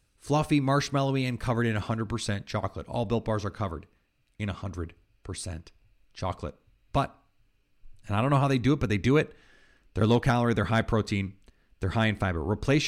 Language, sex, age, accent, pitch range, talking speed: English, male, 30-49, American, 105-135 Hz, 180 wpm